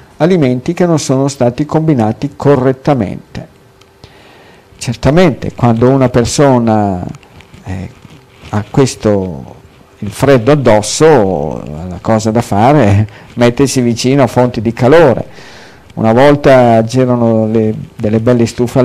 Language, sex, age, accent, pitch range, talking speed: Italian, male, 50-69, native, 115-130 Hz, 110 wpm